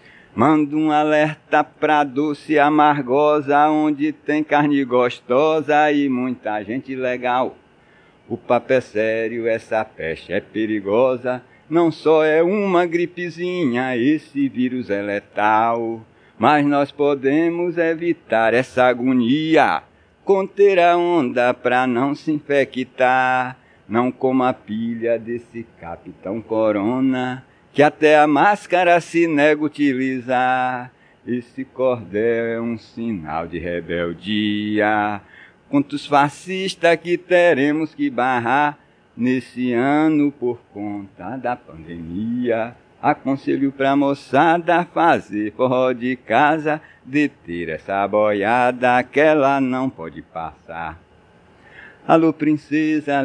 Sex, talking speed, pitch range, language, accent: male, 110 wpm, 115-150 Hz, Portuguese, Brazilian